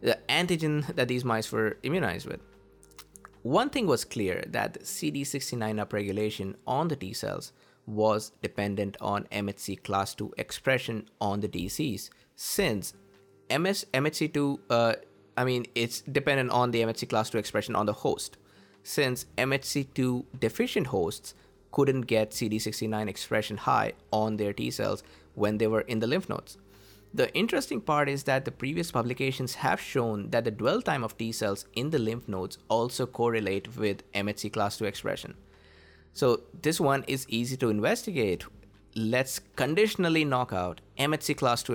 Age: 20-39